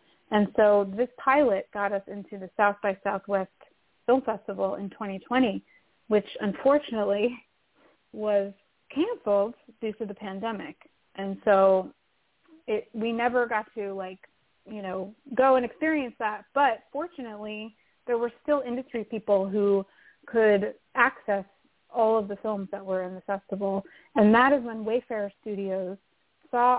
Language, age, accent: English, 30-49, American